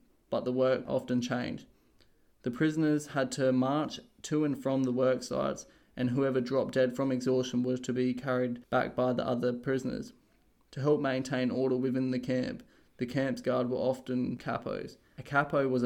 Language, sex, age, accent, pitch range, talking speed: English, male, 20-39, Australian, 125-130 Hz, 180 wpm